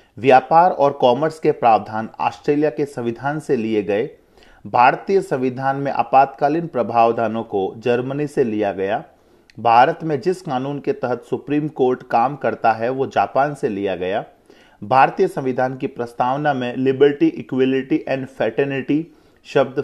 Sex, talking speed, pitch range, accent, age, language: male, 140 wpm, 115-150 Hz, native, 30-49, Hindi